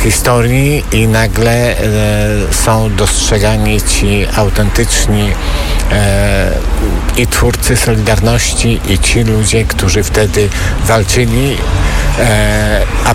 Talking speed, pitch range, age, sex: 90 wpm, 100-120 Hz, 60-79, male